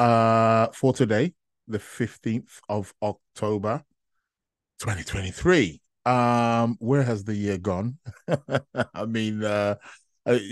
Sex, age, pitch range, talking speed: male, 20-39, 110-130 Hz, 105 wpm